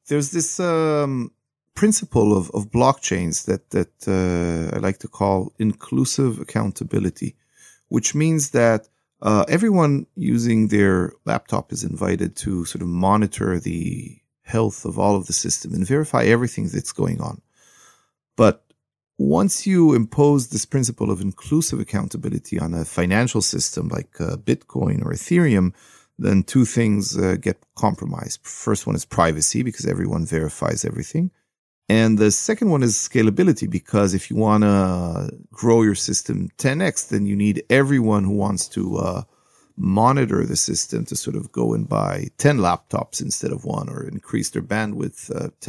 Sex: male